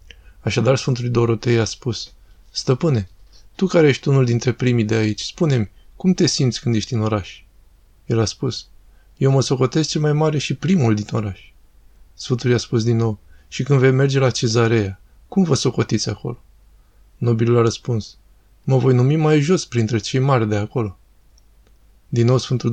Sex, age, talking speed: male, 20-39, 175 wpm